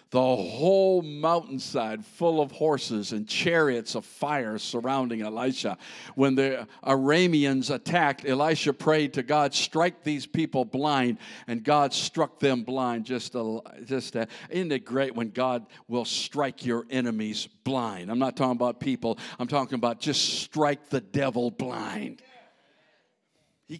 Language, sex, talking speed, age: English, male, 145 wpm, 60-79